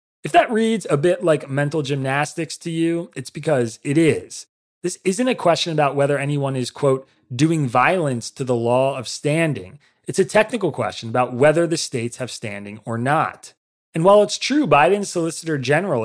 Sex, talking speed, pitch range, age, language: male, 185 wpm, 125-170 Hz, 30-49, English